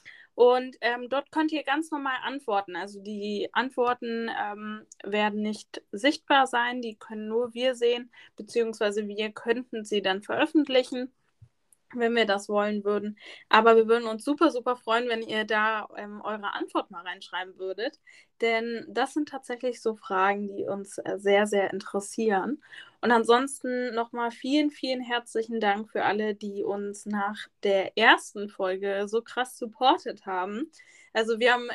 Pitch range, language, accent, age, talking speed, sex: 205-250 Hz, German, German, 10-29, 155 wpm, female